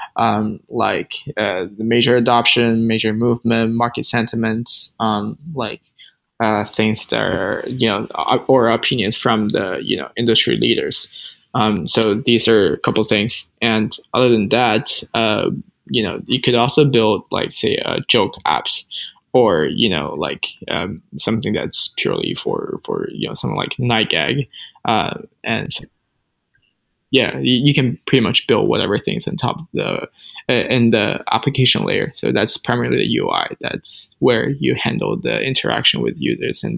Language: English